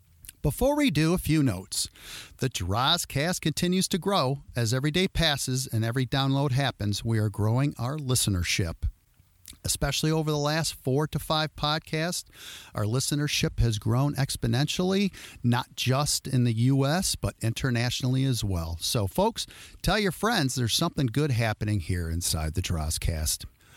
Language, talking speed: English, 150 wpm